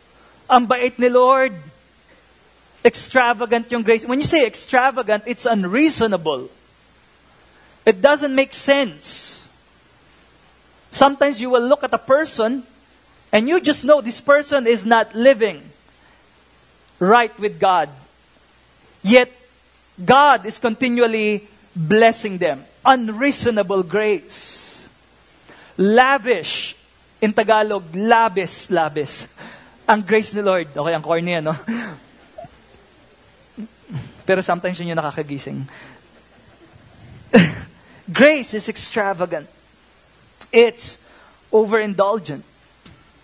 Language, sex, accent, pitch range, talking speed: English, male, Filipino, 180-245 Hz, 85 wpm